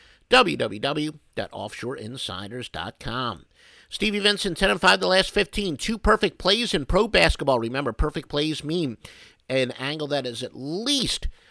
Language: English